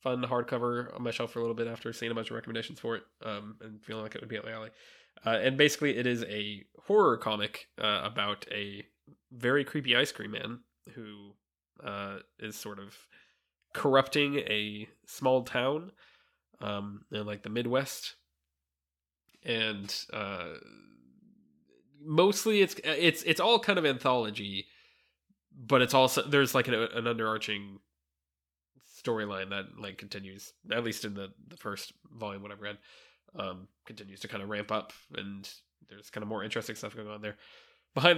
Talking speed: 170 wpm